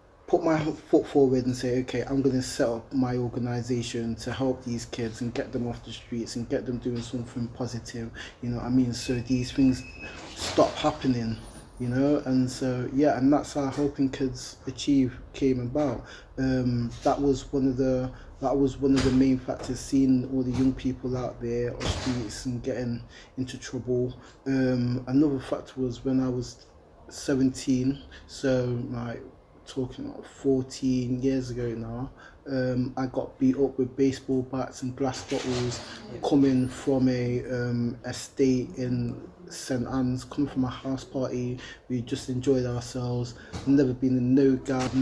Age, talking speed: 20-39, 170 wpm